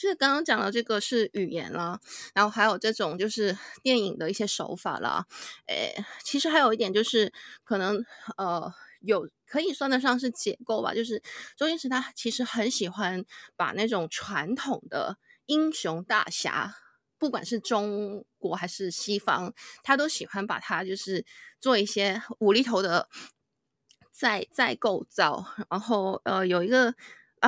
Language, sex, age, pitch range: Chinese, female, 20-39, 200-255 Hz